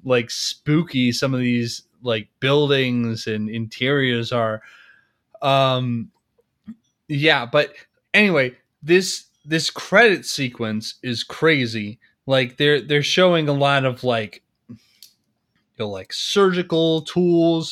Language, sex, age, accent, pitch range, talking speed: English, male, 20-39, American, 115-150 Hz, 110 wpm